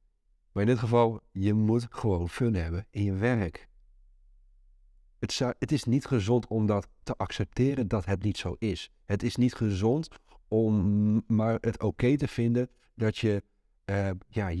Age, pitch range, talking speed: 50-69, 95-120 Hz, 155 wpm